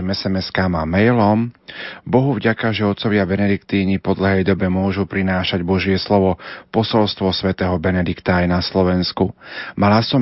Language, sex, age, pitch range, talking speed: Slovak, male, 40-59, 90-105 Hz, 130 wpm